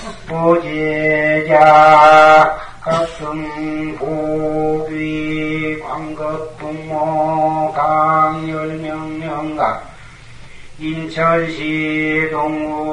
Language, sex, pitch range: Korean, male, 150-155 Hz